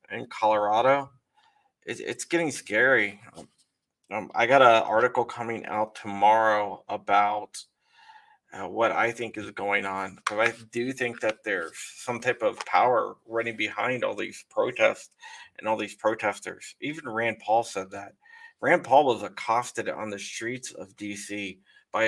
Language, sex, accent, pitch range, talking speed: English, male, American, 105-165 Hz, 150 wpm